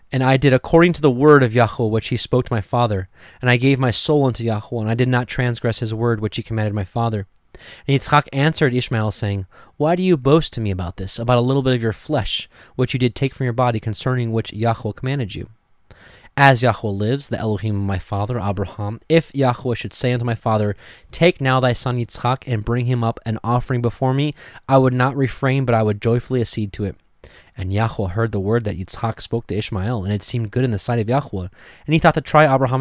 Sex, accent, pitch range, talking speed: male, American, 105-130 Hz, 240 wpm